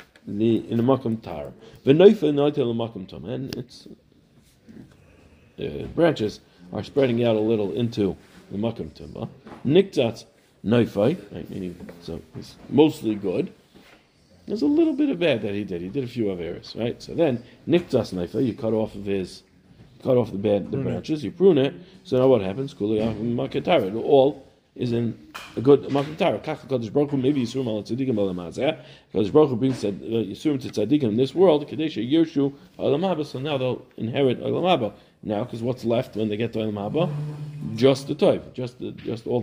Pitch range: 105-140 Hz